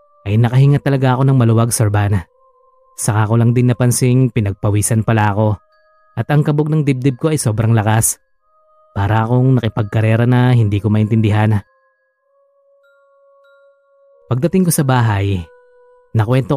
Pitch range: 110-155 Hz